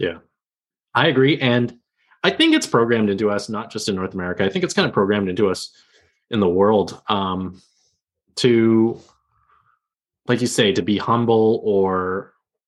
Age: 20-39